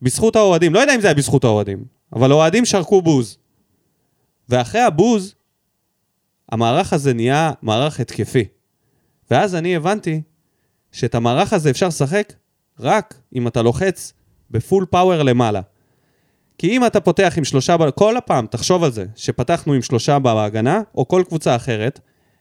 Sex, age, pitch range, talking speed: male, 30-49, 130-195 Hz, 145 wpm